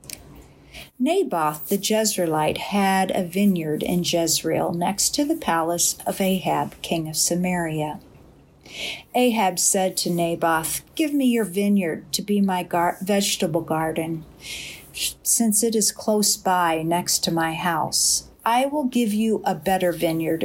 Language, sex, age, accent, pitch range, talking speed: English, female, 50-69, American, 170-210 Hz, 140 wpm